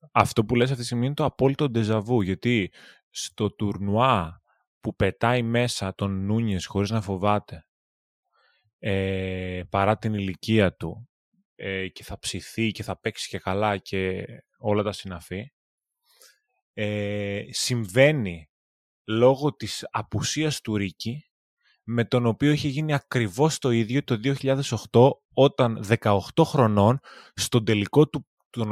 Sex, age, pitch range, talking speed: male, 20-39, 105-135 Hz, 130 wpm